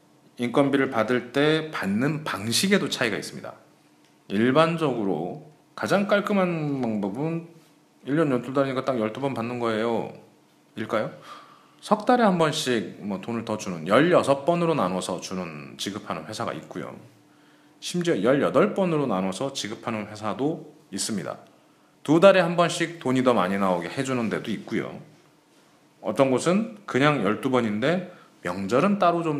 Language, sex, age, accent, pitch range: Korean, male, 30-49, native, 110-170 Hz